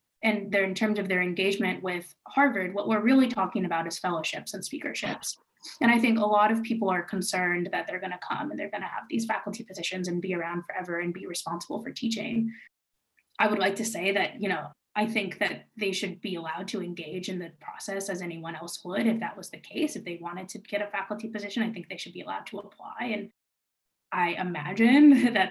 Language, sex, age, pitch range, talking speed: English, female, 20-39, 180-230 Hz, 230 wpm